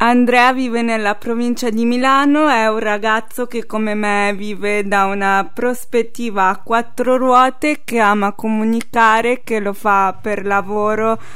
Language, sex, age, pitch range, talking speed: Italian, female, 20-39, 205-235 Hz, 145 wpm